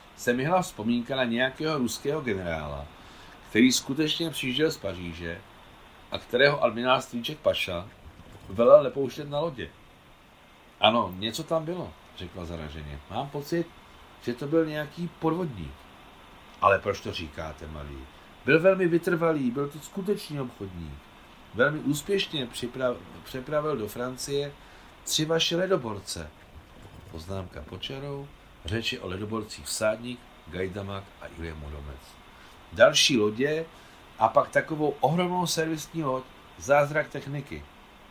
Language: Czech